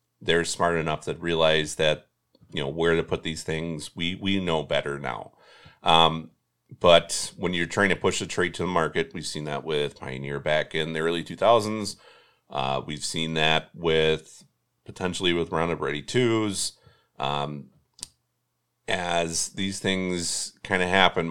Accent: American